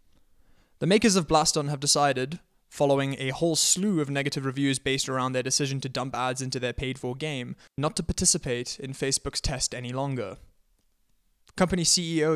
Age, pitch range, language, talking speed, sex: 20-39, 130-160 Hz, English, 165 wpm, male